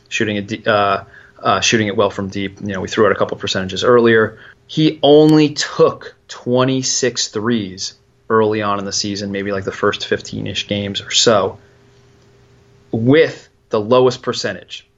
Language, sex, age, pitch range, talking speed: English, male, 30-49, 105-125 Hz, 160 wpm